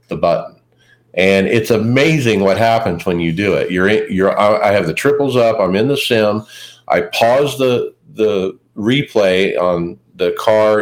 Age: 50-69